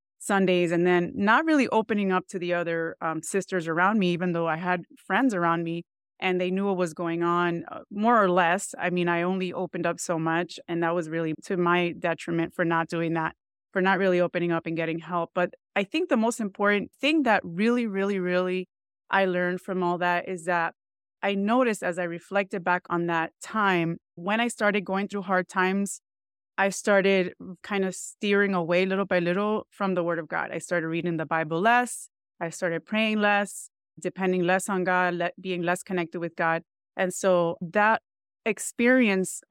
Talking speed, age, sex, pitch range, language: 195 wpm, 20-39, female, 175-200 Hz, English